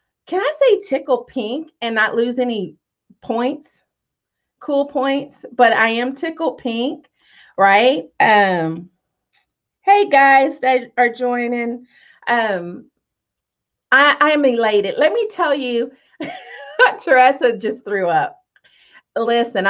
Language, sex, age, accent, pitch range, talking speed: English, female, 40-59, American, 200-270 Hz, 115 wpm